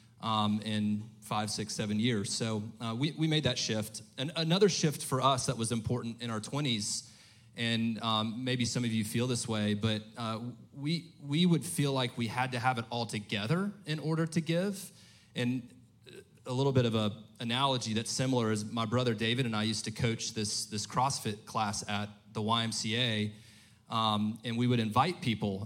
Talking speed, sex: 190 wpm, male